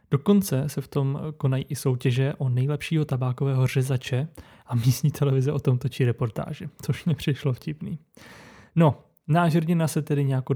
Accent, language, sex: native, Czech, male